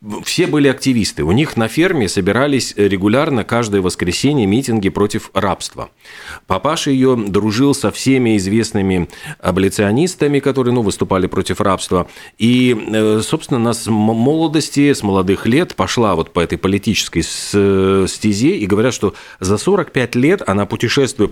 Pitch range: 95-120 Hz